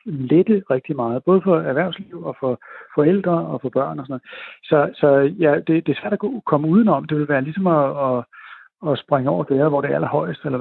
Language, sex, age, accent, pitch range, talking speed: Danish, male, 60-79, native, 130-165 Hz, 215 wpm